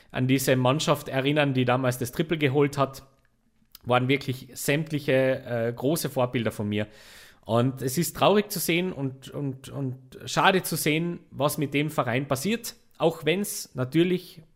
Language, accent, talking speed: German, Austrian, 155 wpm